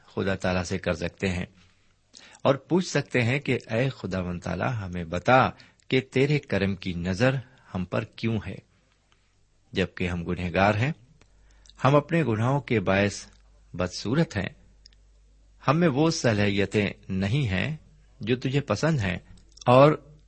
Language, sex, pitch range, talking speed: Urdu, male, 90-125 Hz, 140 wpm